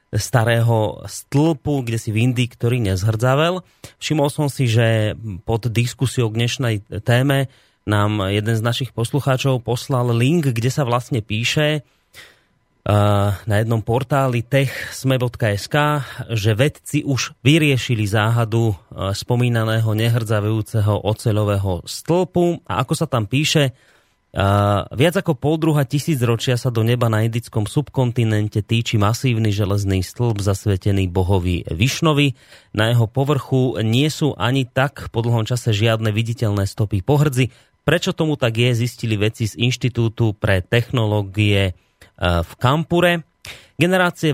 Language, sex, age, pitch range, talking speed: Slovak, male, 30-49, 110-135 Hz, 125 wpm